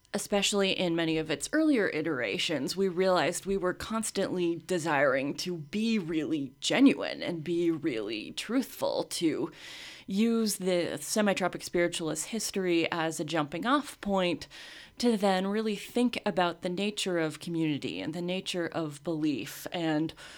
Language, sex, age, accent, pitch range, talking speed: English, female, 30-49, American, 160-195 Hz, 135 wpm